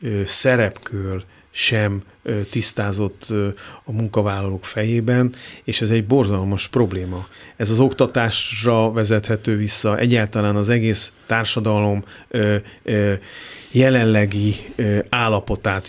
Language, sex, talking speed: Hungarian, male, 85 wpm